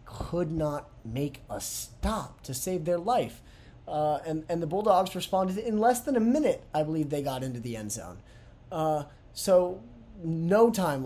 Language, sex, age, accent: English, male, 30-49, American